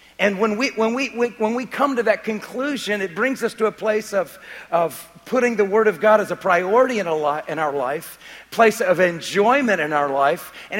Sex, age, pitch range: male, 50-69, 180-230 Hz